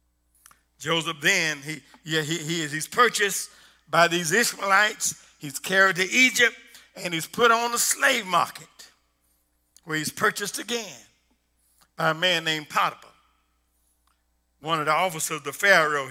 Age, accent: 50-69, American